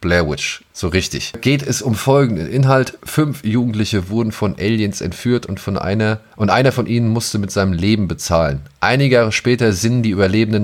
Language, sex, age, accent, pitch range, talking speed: German, male, 30-49, German, 95-130 Hz, 185 wpm